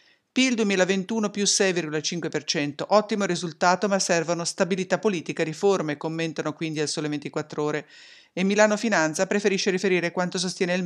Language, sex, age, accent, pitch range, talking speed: English, female, 50-69, Italian, 155-195 Hz, 140 wpm